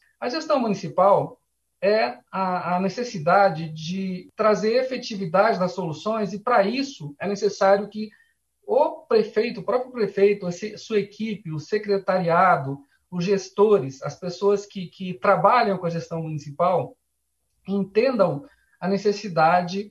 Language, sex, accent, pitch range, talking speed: Portuguese, male, Brazilian, 175-215 Hz, 120 wpm